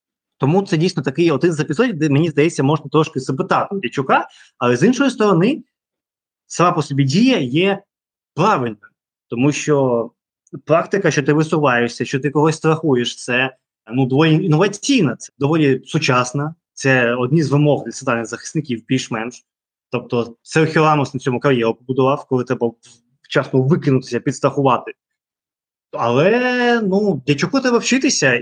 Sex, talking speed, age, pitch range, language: male, 135 wpm, 20-39, 130-165 Hz, Ukrainian